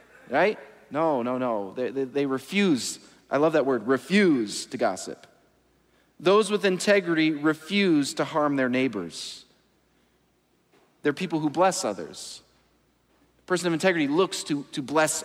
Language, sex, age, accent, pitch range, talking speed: English, male, 40-59, American, 140-185 Hz, 140 wpm